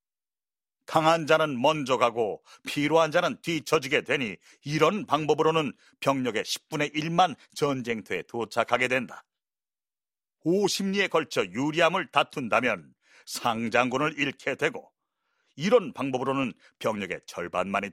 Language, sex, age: Korean, male, 40-59